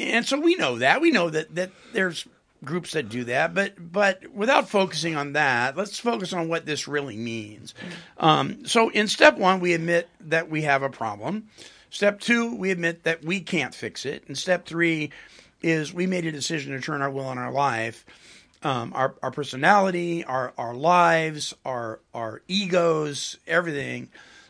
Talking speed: 180 wpm